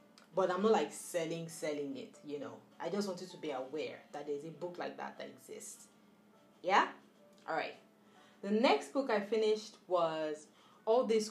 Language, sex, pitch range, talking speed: English, female, 160-210 Hz, 180 wpm